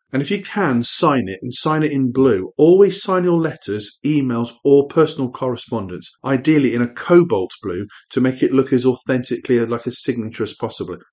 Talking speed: 190 wpm